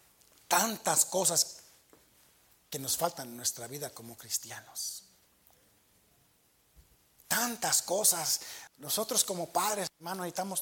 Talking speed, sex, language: 95 wpm, male, Spanish